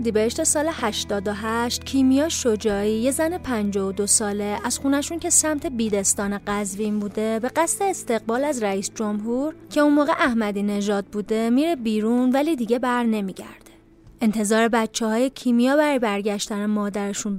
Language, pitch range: Persian, 215-280 Hz